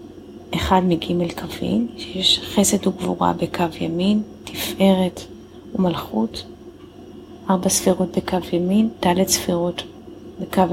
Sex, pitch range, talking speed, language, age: female, 180-205 Hz, 95 wpm, Hebrew, 30-49